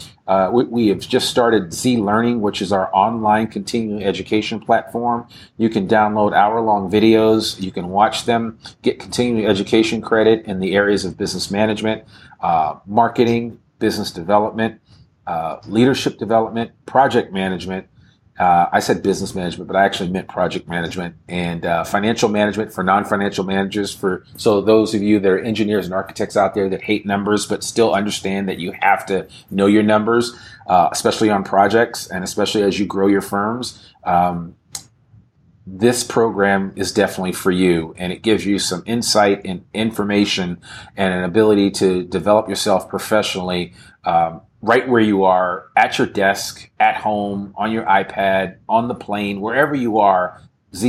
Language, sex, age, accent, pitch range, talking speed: English, male, 40-59, American, 95-110 Hz, 165 wpm